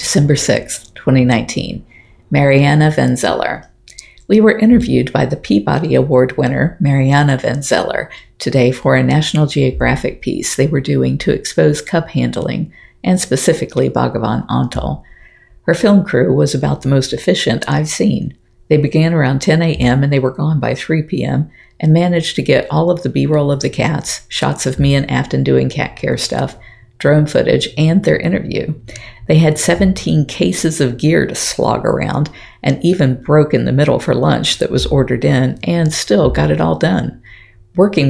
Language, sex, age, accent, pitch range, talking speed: English, female, 50-69, American, 125-160 Hz, 170 wpm